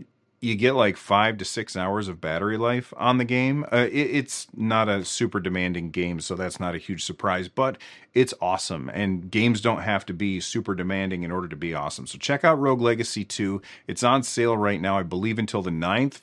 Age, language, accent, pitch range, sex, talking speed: 40-59, English, American, 90-115 Hz, male, 215 wpm